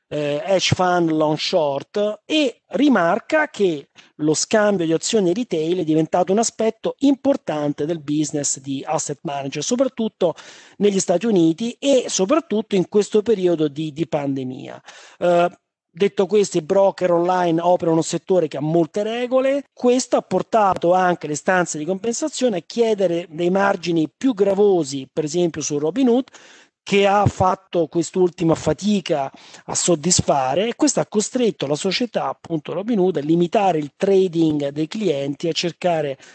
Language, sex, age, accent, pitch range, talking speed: Italian, male, 40-59, native, 160-205 Hz, 150 wpm